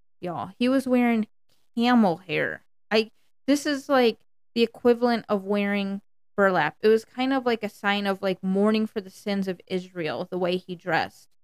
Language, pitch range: English, 175-220 Hz